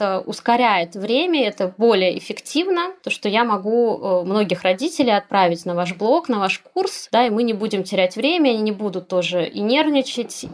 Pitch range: 200-255 Hz